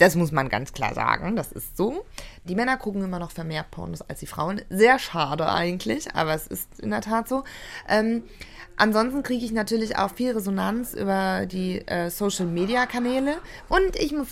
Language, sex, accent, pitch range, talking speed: German, female, German, 175-230 Hz, 195 wpm